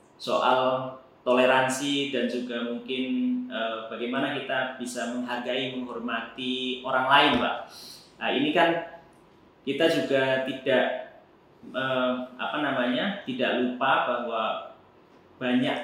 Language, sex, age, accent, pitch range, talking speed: Indonesian, male, 30-49, native, 120-140 Hz, 100 wpm